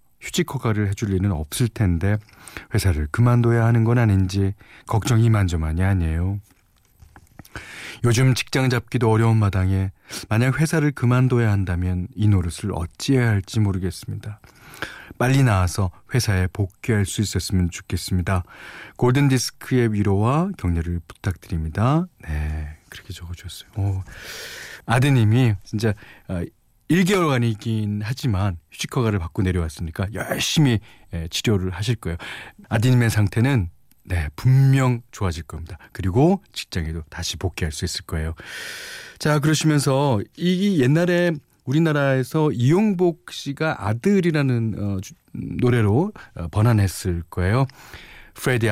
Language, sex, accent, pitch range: Korean, male, native, 95-125 Hz